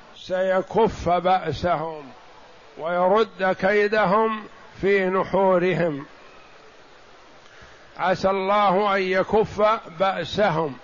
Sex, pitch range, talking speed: male, 190-225 Hz, 60 wpm